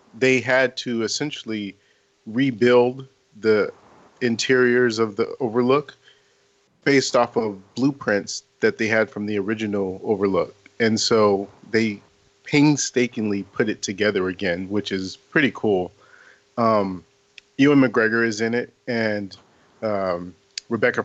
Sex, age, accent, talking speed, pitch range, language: male, 40-59, American, 120 wpm, 105-125 Hz, English